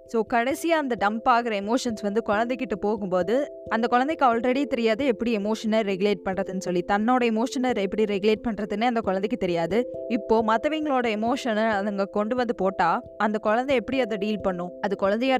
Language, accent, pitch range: Tamil, native, 205-250 Hz